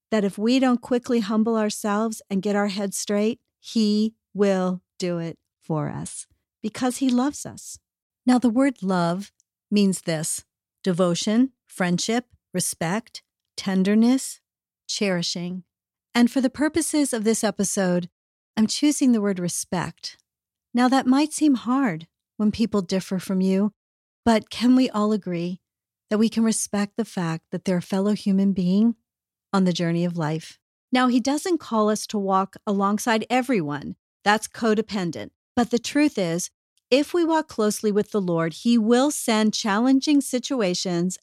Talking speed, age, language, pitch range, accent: 150 wpm, 40-59, English, 190-245 Hz, American